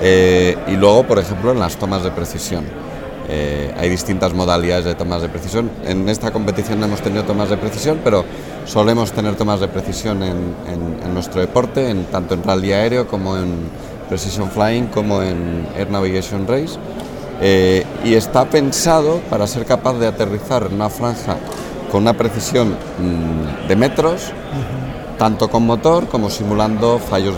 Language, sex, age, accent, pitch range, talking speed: Spanish, male, 30-49, Spanish, 95-125 Hz, 160 wpm